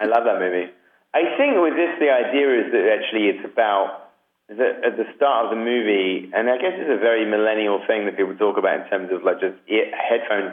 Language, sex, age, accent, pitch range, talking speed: English, male, 30-49, British, 100-120 Hz, 235 wpm